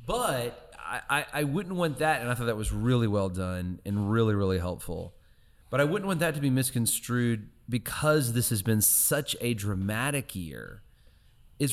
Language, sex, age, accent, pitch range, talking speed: English, male, 30-49, American, 95-125 Hz, 185 wpm